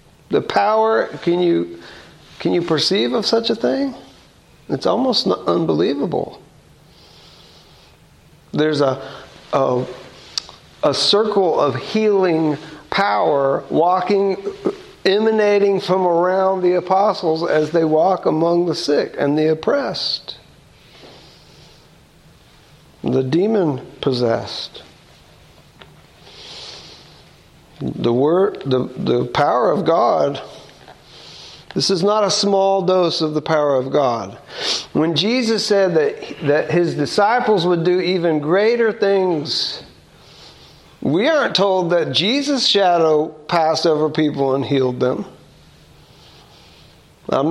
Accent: American